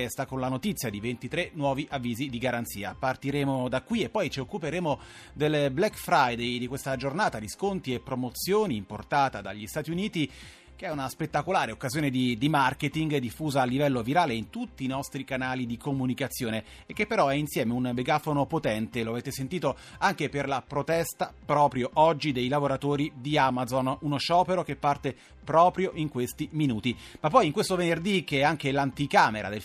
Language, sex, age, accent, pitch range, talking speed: Italian, male, 30-49, native, 125-170 Hz, 180 wpm